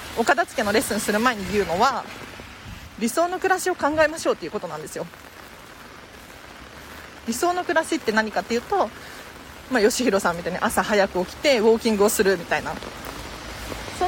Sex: female